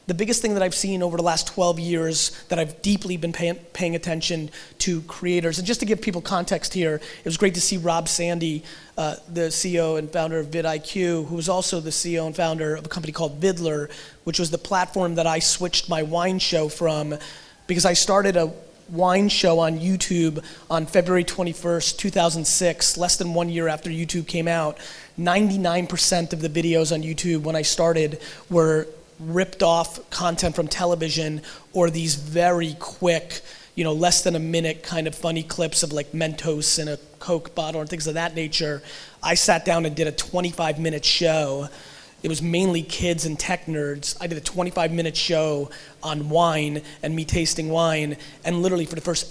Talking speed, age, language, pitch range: 190 wpm, 30-49, English, 160-180 Hz